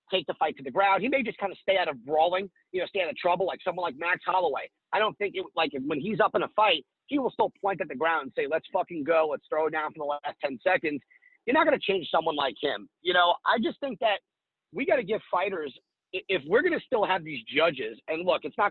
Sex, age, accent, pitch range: male, 30-49, American, 160-215 Hz